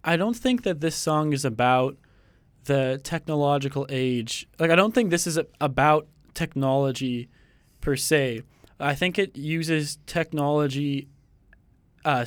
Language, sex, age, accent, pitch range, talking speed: English, male, 20-39, American, 130-155 Hz, 130 wpm